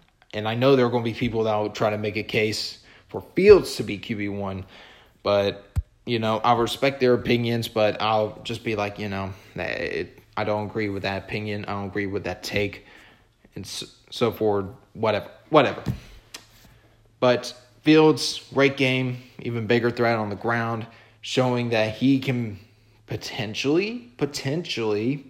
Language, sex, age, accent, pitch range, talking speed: English, male, 20-39, American, 110-130 Hz, 165 wpm